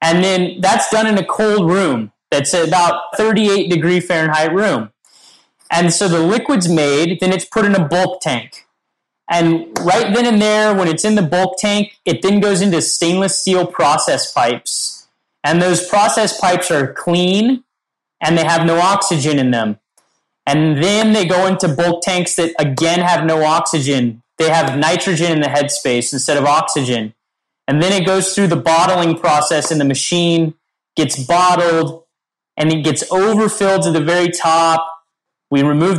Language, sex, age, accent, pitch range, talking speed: English, male, 30-49, American, 150-185 Hz, 170 wpm